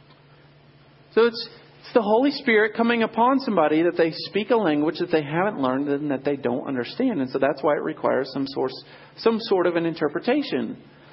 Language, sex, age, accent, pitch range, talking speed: English, male, 40-59, American, 165-240 Hz, 195 wpm